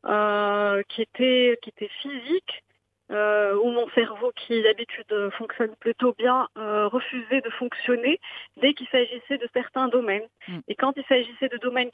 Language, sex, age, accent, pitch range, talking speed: English, female, 30-49, French, 205-255 Hz, 155 wpm